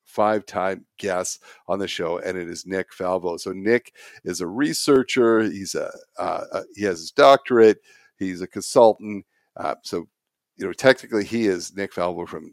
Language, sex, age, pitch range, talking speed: English, male, 50-69, 90-105 Hz, 170 wpm